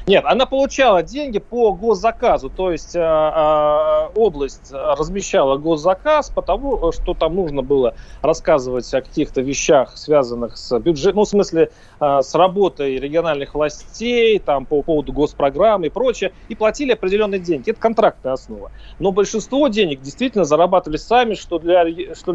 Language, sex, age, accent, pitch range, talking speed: Russian, male, 30-49, native, 150-210 Hz, 140 wpm